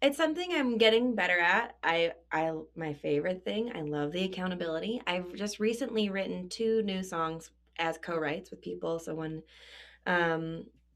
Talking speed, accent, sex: 160 wpm, American, female